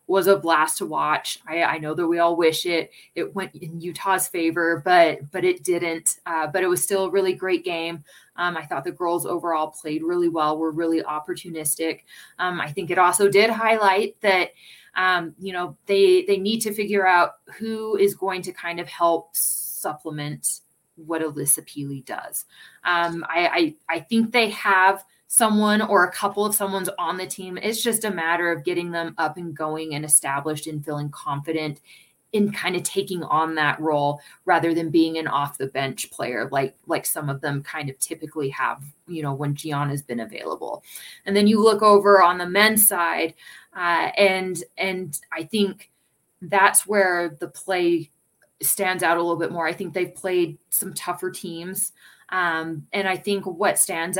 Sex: female